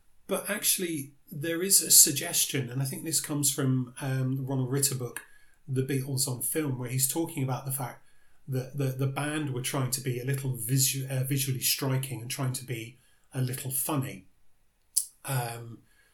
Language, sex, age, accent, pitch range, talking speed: English, male, 30-49, British, 125-140 Hz, 180 wpm